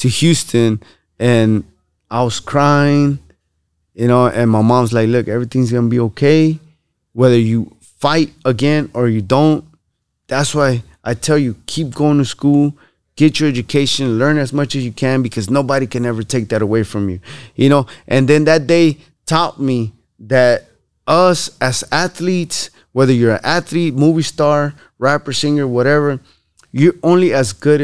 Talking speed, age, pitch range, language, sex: 165 wpm, 20-39, 115-160 Hz, English, male